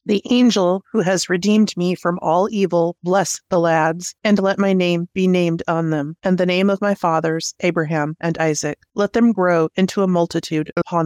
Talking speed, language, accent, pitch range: 195 wpm, English, American, 165-200 Hz